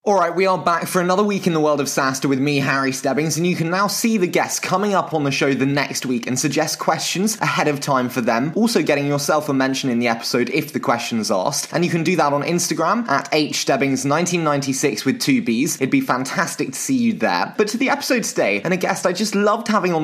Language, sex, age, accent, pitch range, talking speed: English, male, 20-39, British, 140-190 Hz, 250 wpm